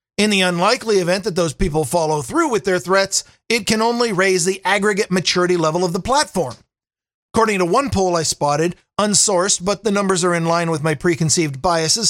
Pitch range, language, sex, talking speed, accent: 175-220 Hz, English, male, 200 wpm, American